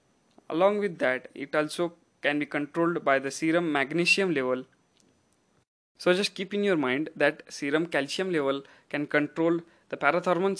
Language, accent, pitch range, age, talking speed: English, Indian, 140-175 Hz, 20-39, 155 wpm